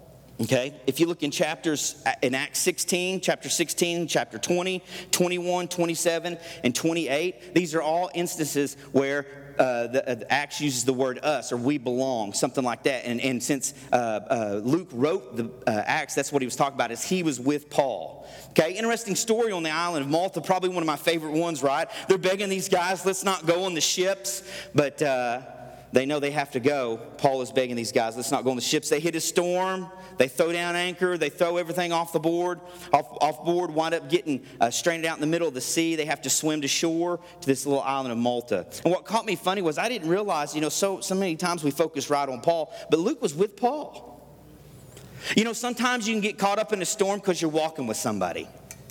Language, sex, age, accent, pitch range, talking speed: English, male, 40-59, American, 140-180 Hz, 225 wpm